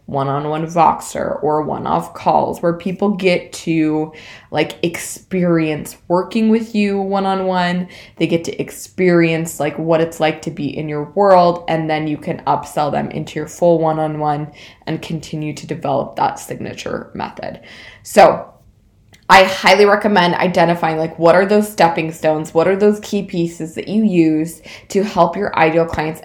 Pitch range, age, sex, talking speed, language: 155-185 Hz, 20-39, female, 160 wpm, English